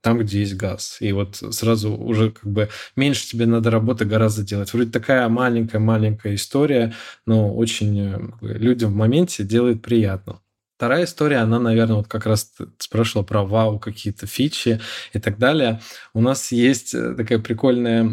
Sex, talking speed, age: male, 155 wpm, 20-39